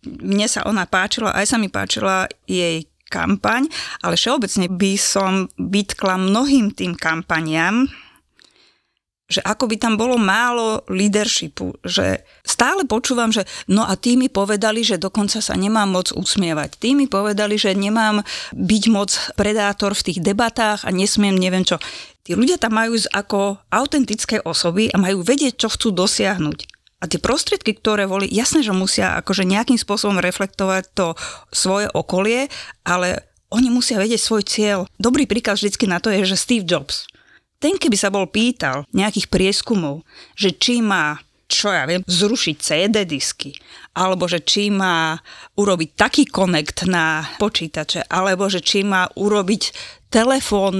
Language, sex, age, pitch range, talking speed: Slovak, female, 30-49, 185-225 Hz, 150 wpm